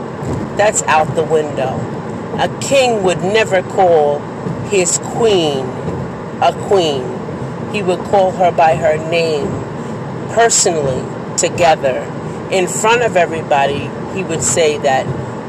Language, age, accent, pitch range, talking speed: English, 40-59, American, 155-200 Hz, 115 wpm